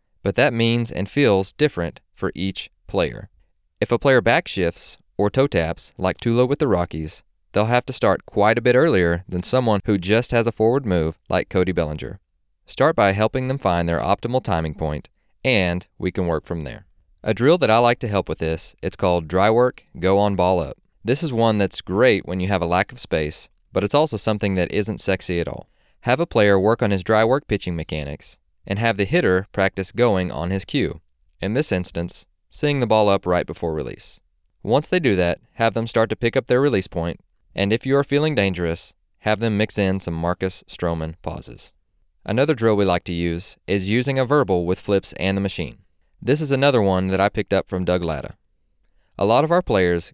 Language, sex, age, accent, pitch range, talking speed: English, male, 20-39, American, 85-115 Hz, 215 wpm